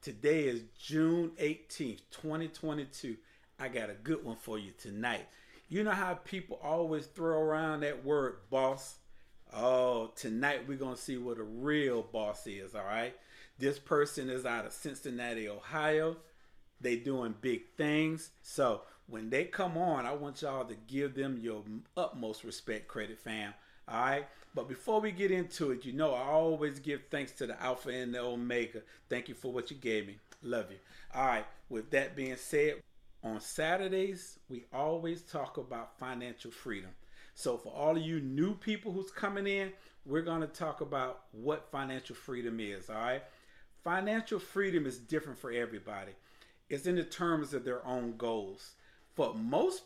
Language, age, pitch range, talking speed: English, 40-59, 120-160 Hz, 170 wpm